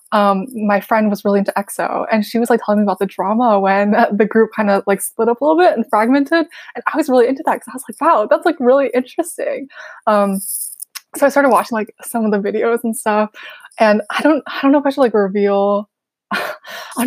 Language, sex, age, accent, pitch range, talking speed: English, female, 20-39, American, 205-260 Hz, 245 wpm